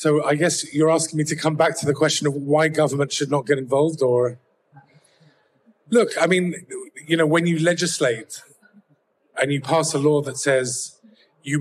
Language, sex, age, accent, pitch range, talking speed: English, male, 30-49, British, 140-160 Hz, 185 wpm